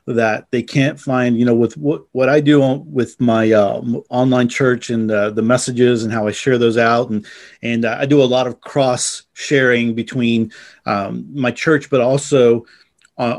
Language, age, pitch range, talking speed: English, 40-59, 115-130 Hz, 195 wpm